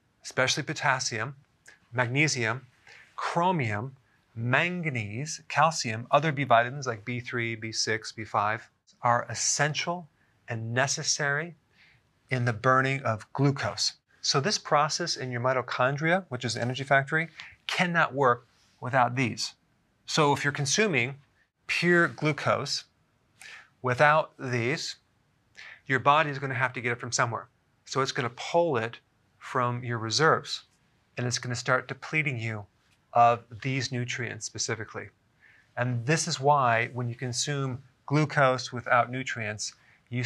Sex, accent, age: male, American, 40-59